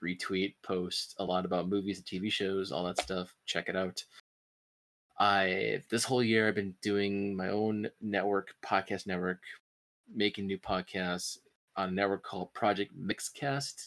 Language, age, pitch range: English, 20-39, 95-105 Hz